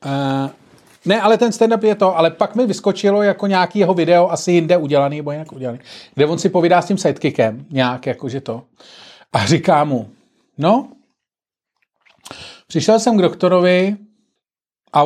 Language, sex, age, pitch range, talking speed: Czech, male, 40-59, 140-195 Hz, 155 wpm